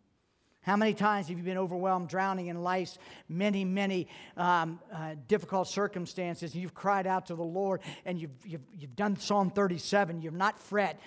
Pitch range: 150-185 Hz